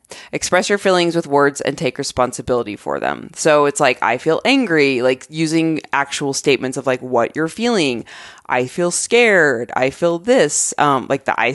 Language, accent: English, American